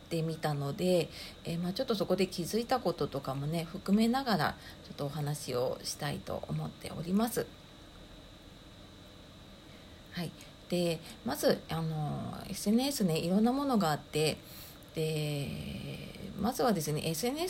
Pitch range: 155-220 Hz